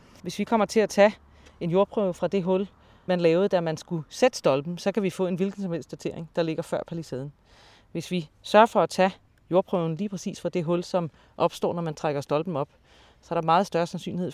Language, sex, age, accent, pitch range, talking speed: Danish, female, 30-49, native, 155-185 Hz, 220 wpm